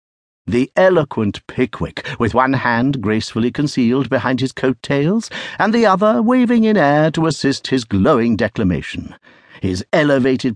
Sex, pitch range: male, 105-150 Hz